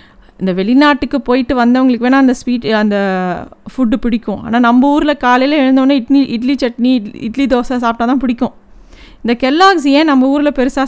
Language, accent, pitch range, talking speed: Tamil, native, 220-280 Hz, 165 wpm